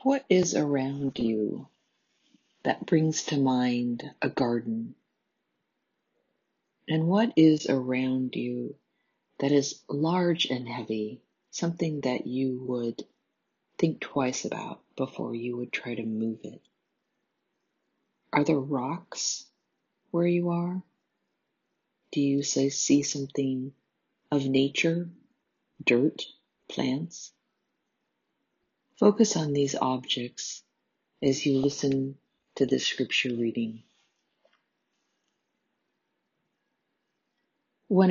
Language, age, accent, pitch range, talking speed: English, 50-69, American, 125-160 Hz, 95 wpm